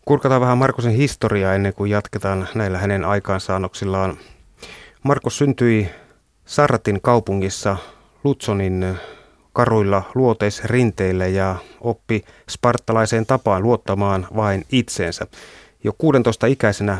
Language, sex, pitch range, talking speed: Finnish, male, 100-120 Hz, 90 wpm